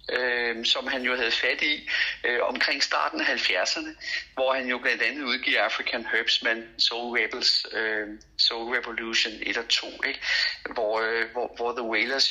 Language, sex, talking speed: Danish, male, 170 wpm